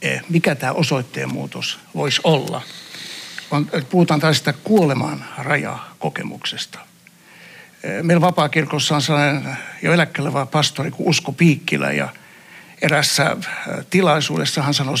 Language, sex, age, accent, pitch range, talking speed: Finnish, male, 60-79, native, 145-180 Hz, 105 wpm